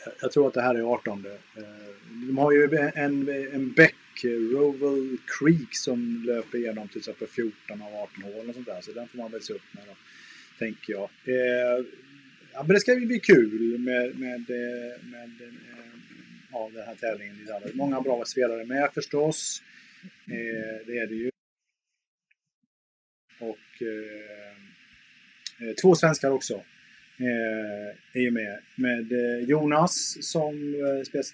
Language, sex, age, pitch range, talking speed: English, male, 30-49, 115-145 Hz, 150 wpm